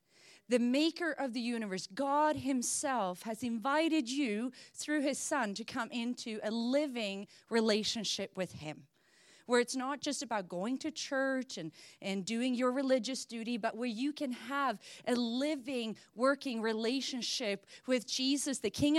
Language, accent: English, American